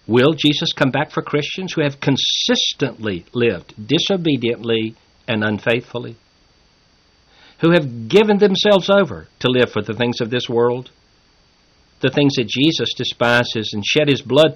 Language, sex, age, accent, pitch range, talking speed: English, male, 50-69, American, 110-150 Hz, 145 wpm